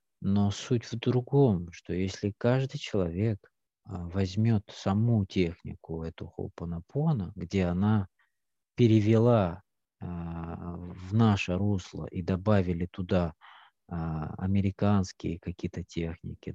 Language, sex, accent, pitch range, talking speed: Russian, male, native, 90-110 Hz, 90 wpm